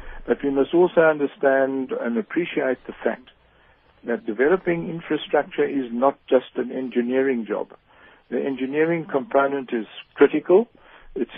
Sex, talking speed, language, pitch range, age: male, 125 wpm, English, 125-155 Hz, 60-79